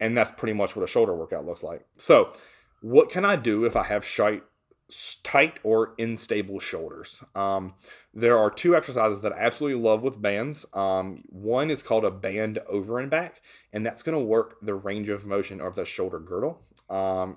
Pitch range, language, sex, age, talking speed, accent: 105-130 Hz, English, male, 30-49, 190 wpm, American